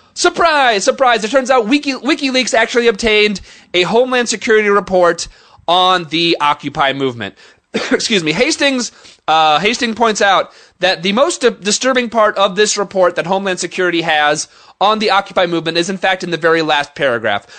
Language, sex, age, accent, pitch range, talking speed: English, male, 30-49, American, 175-235 Hz, 165 wpm